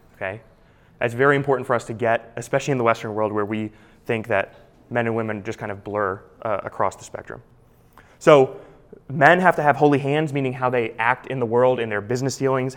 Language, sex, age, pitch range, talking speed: English, male, 20-39, 115-140 Hz, 215 wpm